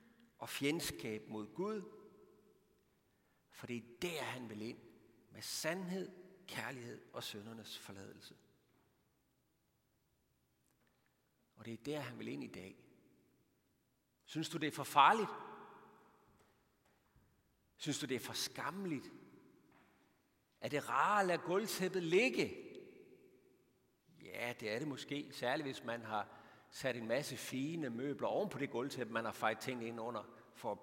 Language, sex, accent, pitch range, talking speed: Danish, male, native, 120-170 Hz, 135 wpm